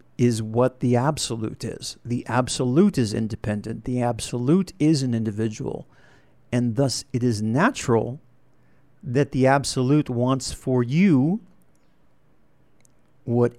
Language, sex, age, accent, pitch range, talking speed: English, male, 50-69, American, 110-130 Hz, 115 wpm